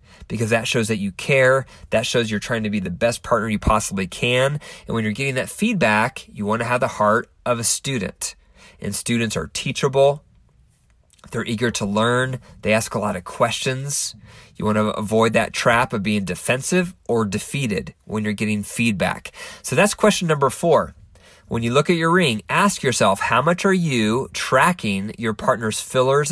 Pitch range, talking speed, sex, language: 105-135 Hz, 185 wpm, male, English